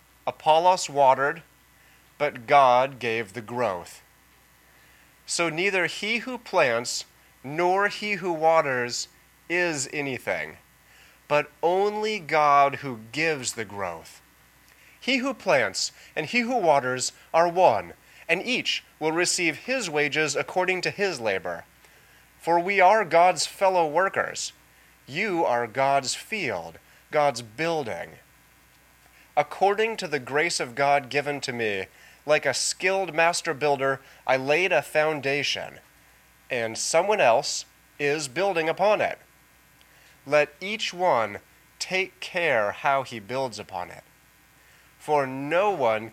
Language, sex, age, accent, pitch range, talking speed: English, male, 30-49, American, 115-170 Hz, 120 wpm